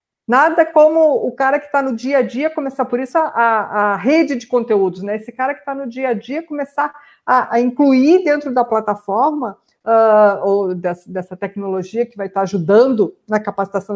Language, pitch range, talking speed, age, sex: Portuguese, 220-275 Hz, 185 wpm, 50-69, female